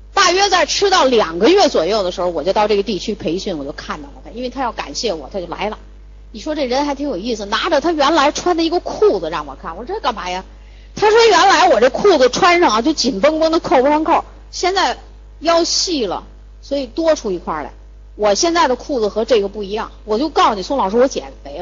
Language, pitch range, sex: Chinese, 195-285 Hz, female